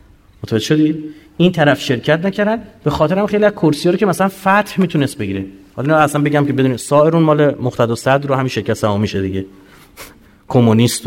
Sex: male